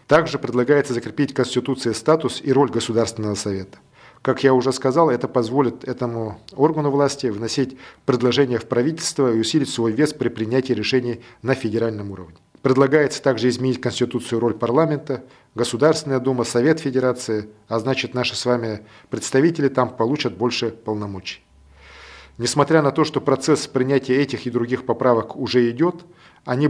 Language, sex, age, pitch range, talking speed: Russian, male, 40-59, 115-140 Hz, 150 wpm